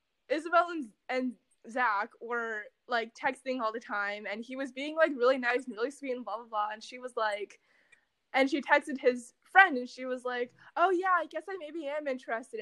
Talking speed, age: 215 wpm, 10-29